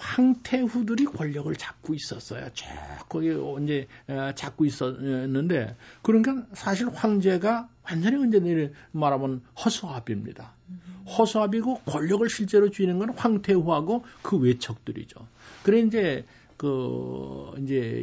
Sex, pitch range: male, 125-180 Hz